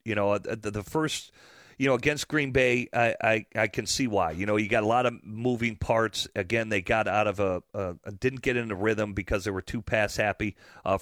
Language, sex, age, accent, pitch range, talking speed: English, male, 40-59, American, 100-120 Hz, 235 wpm